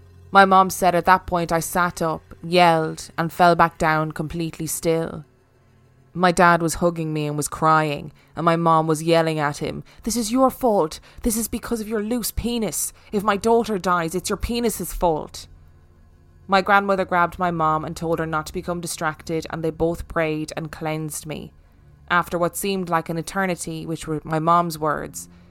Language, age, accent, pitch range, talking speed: English, 20-39, Irish, 150-175 Hz, 190 wpm